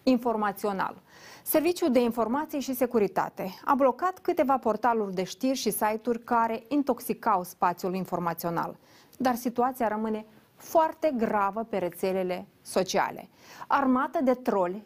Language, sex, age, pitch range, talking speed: Romanian, female, 30-49, 195-255 Hz, 115 wpm